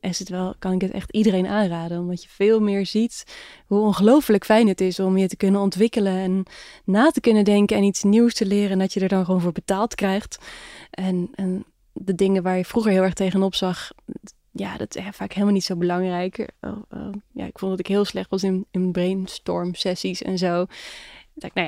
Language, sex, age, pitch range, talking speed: Dutch, female, 20-39, 190-225 Hz, 200 wpm